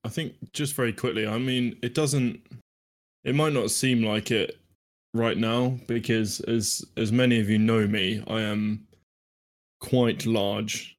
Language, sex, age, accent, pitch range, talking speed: English, male, 20-39, British, 105-115 Hz, 160 wpm